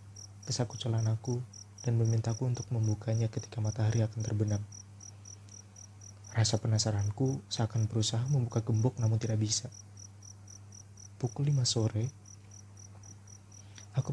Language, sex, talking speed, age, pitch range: Indonesian, male, 100 wpm, 20-39, 100-120 Hz